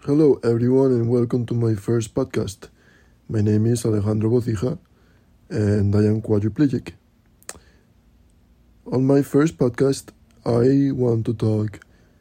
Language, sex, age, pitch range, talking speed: English, male, 20-39, 105-120 Hz, 125 wpm